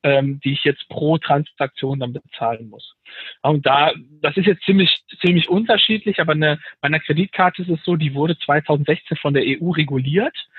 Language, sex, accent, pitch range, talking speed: German, male, German, 140-170 Hz, 175 wpm